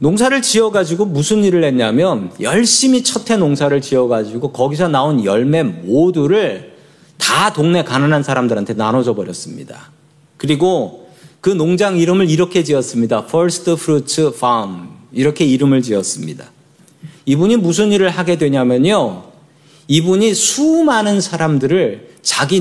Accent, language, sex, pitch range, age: native, Korean, male, 125-185 Hz, 40-59